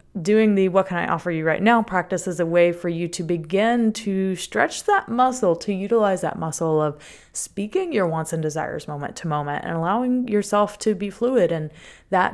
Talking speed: 205 wpm